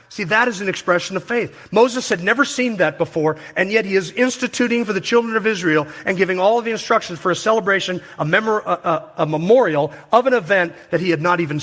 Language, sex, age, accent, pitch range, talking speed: English, male, 40-59, American, 135-185 Hz, 230 wpm